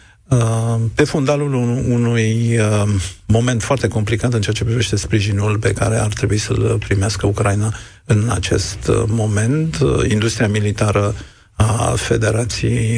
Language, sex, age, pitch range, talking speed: Romanian, male, 50-69, 105-115 Hz, 115 wpm